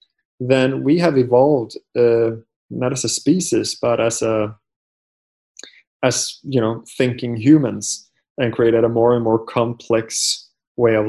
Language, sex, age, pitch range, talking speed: English, male, 20-39, 110-130 Hz, 140 wpm